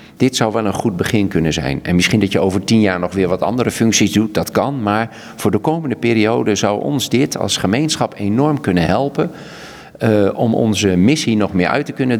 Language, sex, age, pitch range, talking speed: Dutch, male, 50-69, 95-120 Hz, 220 wpm